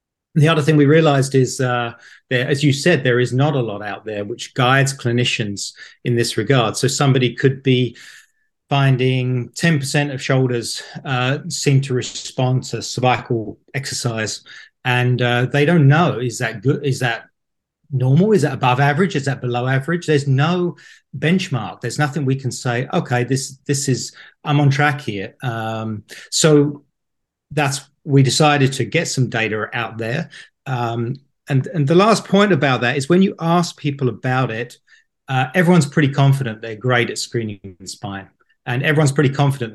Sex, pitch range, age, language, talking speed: male, 120-145 Hz, 40-59, Danish, 170 wpm